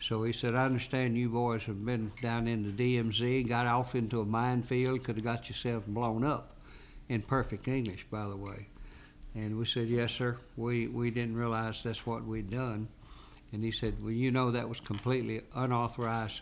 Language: English